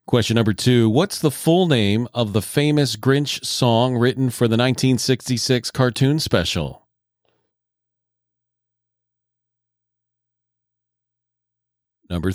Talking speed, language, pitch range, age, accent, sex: 90 wpm, English, 115-130 Hz, 40-59, American, male